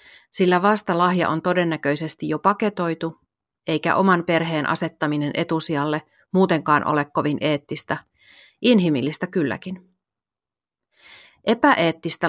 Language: Finnish